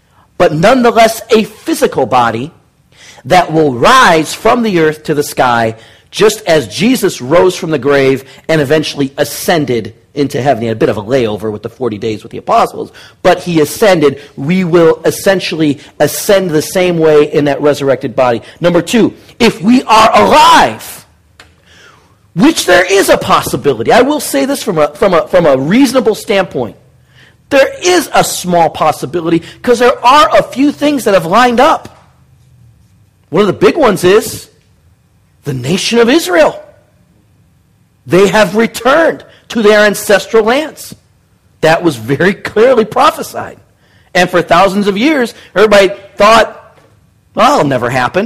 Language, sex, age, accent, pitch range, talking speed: English, male, 40-59, American, 145-230 Hz, 150 wpm